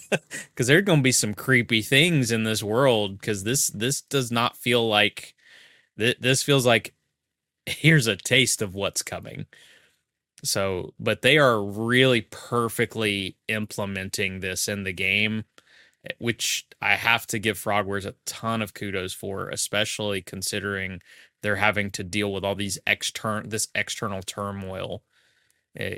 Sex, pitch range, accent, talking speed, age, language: male, 100-115 Hz, American, 150 wpm, 20-39, English